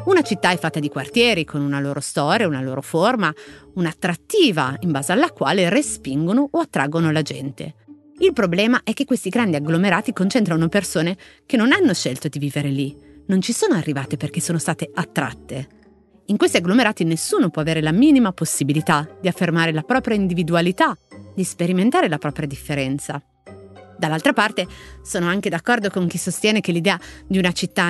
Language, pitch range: Italian, 155-195 Hz